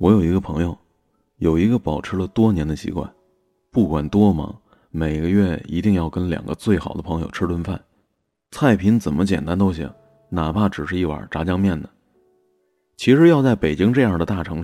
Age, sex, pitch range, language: 30-49, male, 80-110 Hz, Chinese